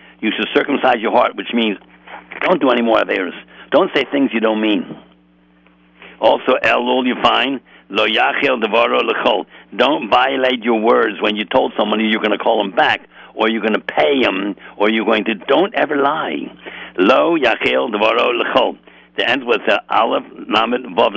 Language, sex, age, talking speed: English, male, 60-79, 170 wpm